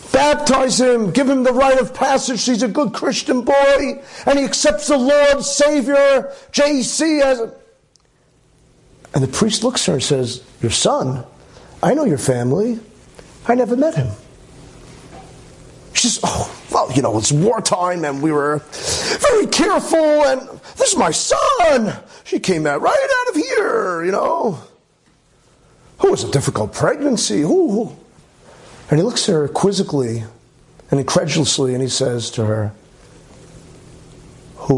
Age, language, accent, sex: 40-59, English, American, male